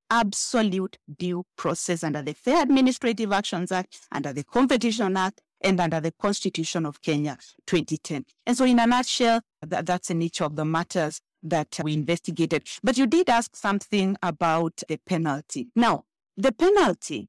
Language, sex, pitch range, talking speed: English, female, 175-240 Hz, 160 wpm